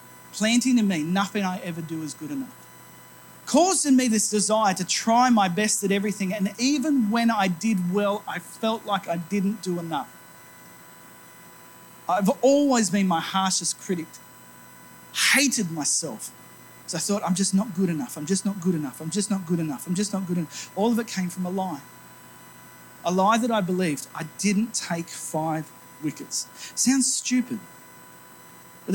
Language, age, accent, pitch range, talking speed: English, 40-59, Australian, 165-210 Hz, 175 wpm